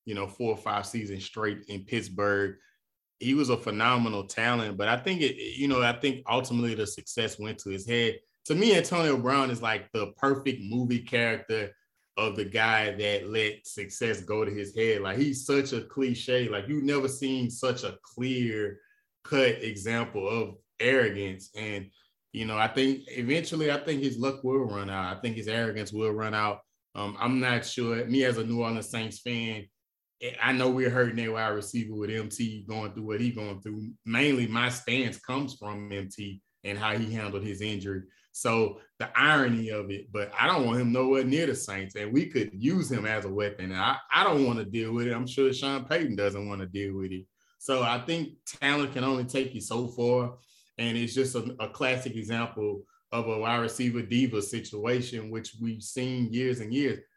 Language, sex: English, male